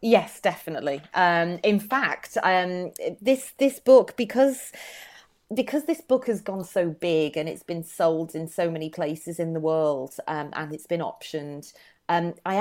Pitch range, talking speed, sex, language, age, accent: 160-205 Hz, 165 wpm, female, English, 30-49, British